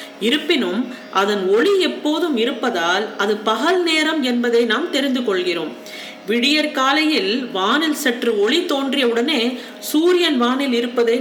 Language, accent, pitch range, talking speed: Tamil, native, 225-320 Hz, 110 wpm